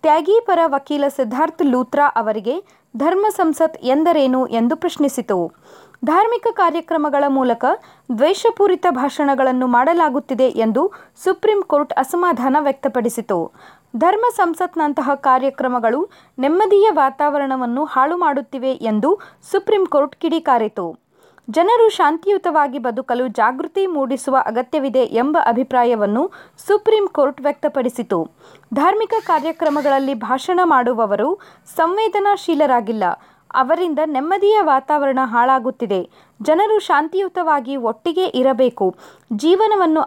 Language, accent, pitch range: Kannada, native, 255-350 Hz